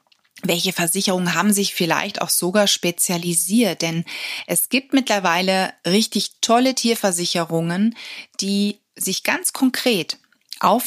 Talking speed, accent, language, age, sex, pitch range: 110 wpm, German, German, 30-49, female, 175-220 Hz